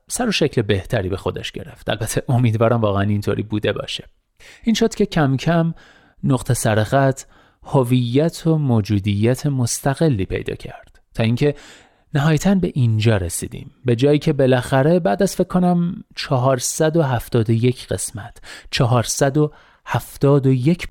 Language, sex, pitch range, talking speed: Persian, male, 115-170 Hz, 125 wpm